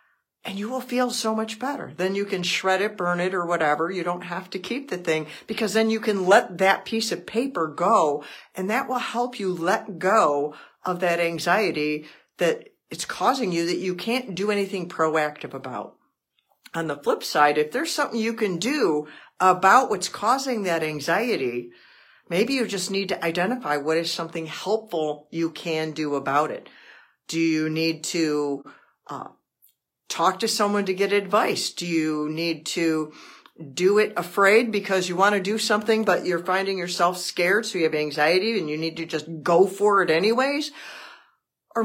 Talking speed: 180 wpm